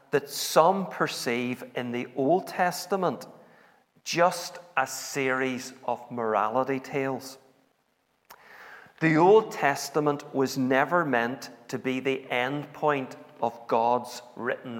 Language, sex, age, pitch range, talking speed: English, male, 40-59, 115-145 Hz, 110 wpm